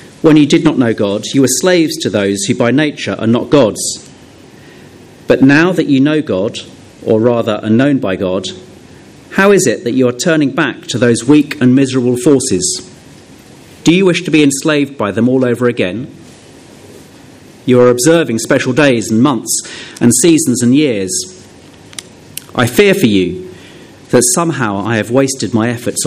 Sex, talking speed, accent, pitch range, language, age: male, 175 wpm, British, 110-145 Hz, English, 40-59